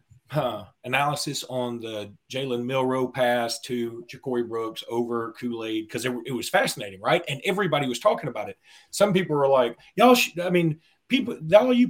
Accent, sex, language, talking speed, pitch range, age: American, male, English, 175 wpm, 130-210 Hz, 30-49